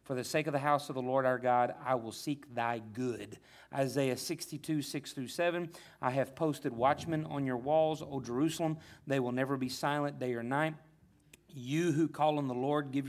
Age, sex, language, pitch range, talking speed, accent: 40-59, male, English, 130-155 Hz, 200 wpm, American